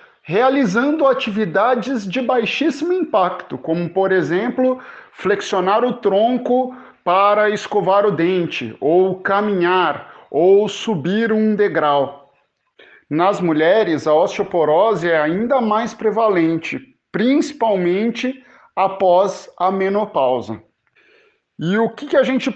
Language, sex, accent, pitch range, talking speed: Portuguese, male, Brazilian, 165-225 Hz, 100 wpm